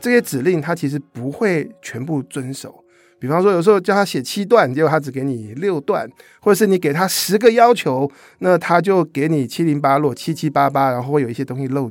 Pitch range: 135-185 Hz